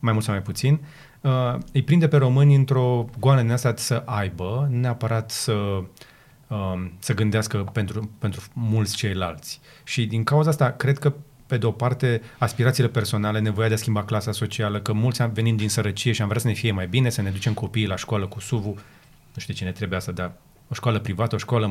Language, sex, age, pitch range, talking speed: Romanian, male, 30-49, 110-145 Hz, 205 wpm